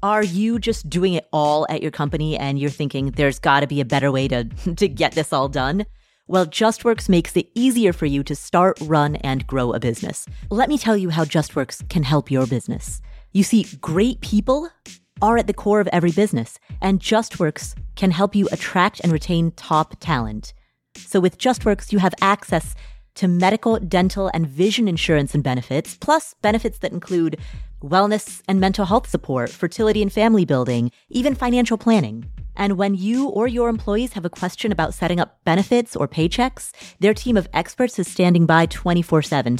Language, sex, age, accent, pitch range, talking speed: English, female, 30-49, American, 150-210 Hz, 185 wpm